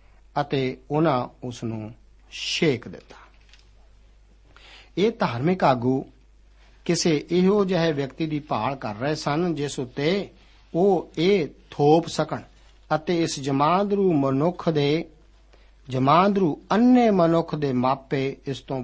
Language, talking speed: Punjabi, 115 wpm